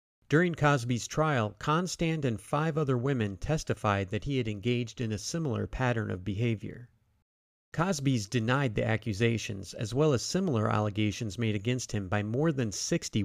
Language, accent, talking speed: English, American, 160 wpm